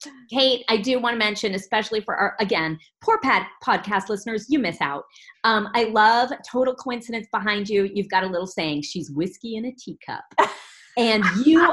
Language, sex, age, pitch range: English, female, 40-59, 180-240 Hz